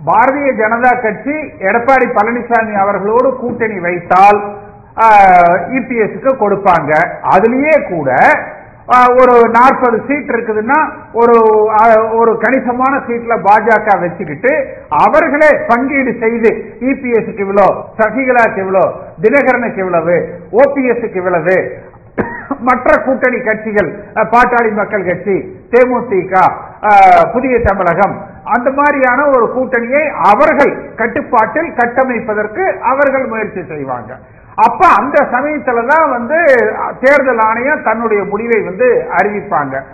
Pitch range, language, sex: 215-270 Hz, Tamil, male